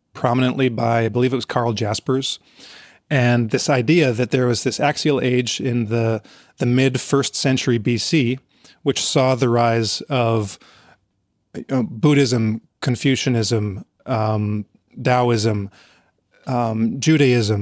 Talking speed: 125 wpm